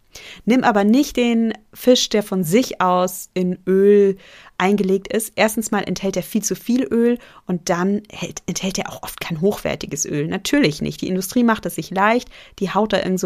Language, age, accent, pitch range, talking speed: German, 30-49, German, 180-220 Hz, 200 wpm